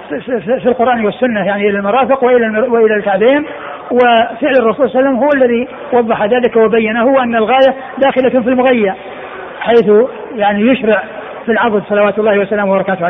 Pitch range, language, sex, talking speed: 210-255 Hz, Arabic, male, 155 wpm